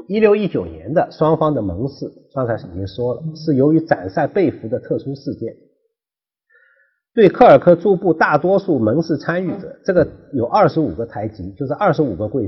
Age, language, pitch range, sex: 50-69, Chinese, 120-185 Hz, male